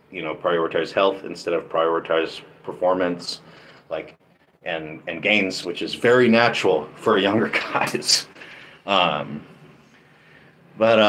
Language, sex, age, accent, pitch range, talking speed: English, male, 30-49, American, 95-115 Hz, 120 wpm